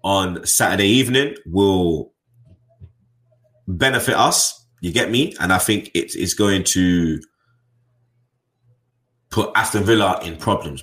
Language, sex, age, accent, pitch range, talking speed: English, male, 20-39, British, 95-120 Hz, 115 wpm